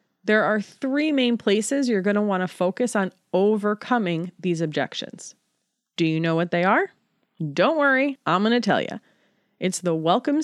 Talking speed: 180 wpm